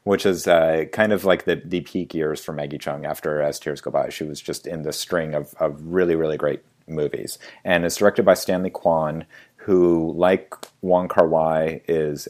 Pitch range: 75-85 Hz